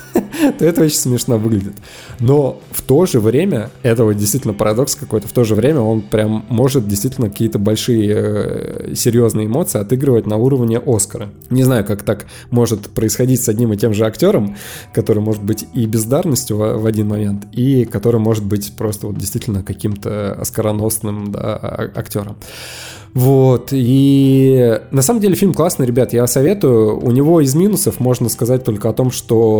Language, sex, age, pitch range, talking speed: Russian, male, 20-39, 105-125 Hz, 165 wpm